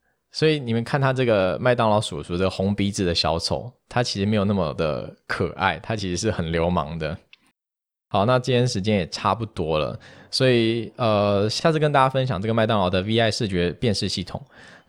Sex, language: male, Chinese